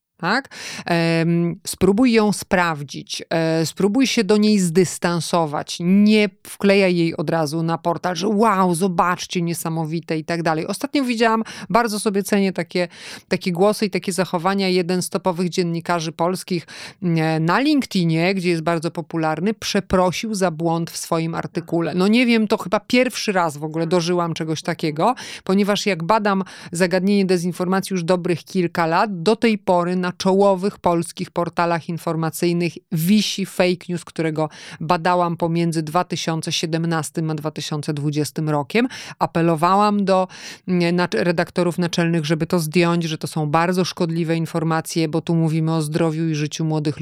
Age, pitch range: 30-49, 165-195 Hz